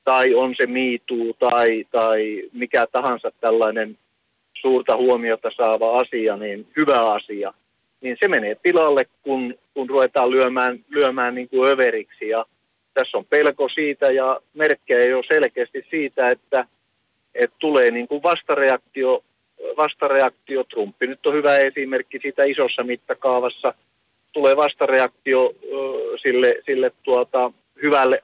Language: Finnish